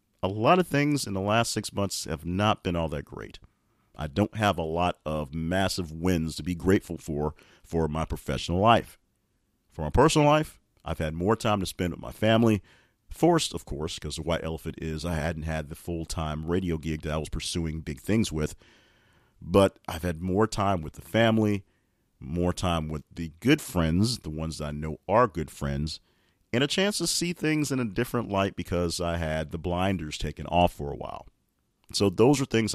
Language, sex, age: English, male, 40-59